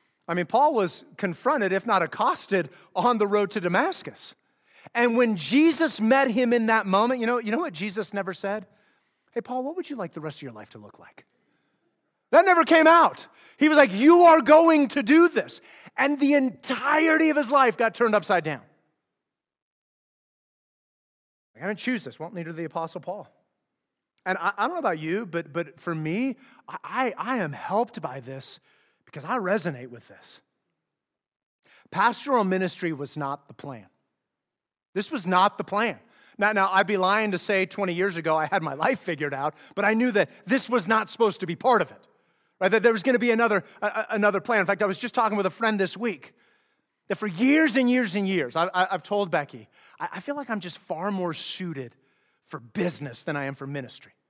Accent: American